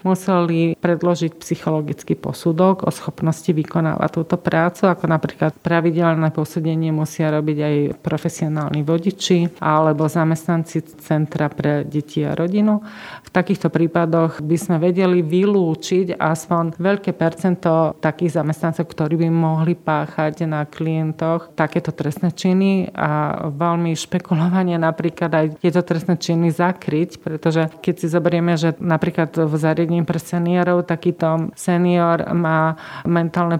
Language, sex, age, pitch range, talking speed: Slovak, female, 30-49, 160-175 Hz, 125 wpm